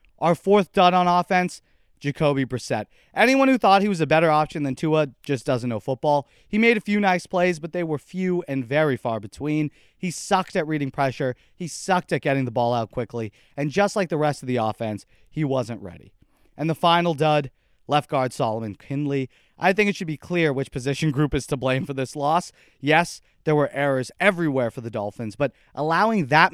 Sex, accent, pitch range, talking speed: male, American, 130-180 Hz, 210 wpm